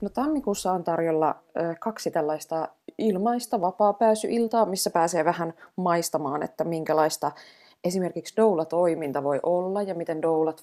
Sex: female